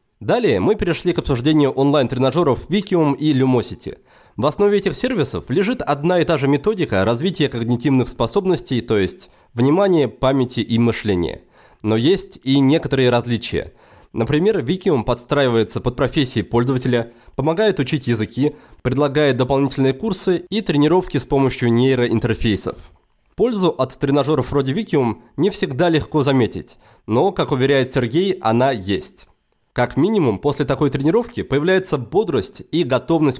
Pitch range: 125-170 Hz